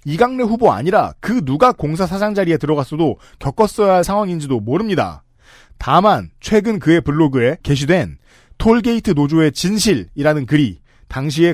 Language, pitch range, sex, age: Korean, 125-185 Hz, male, 40-59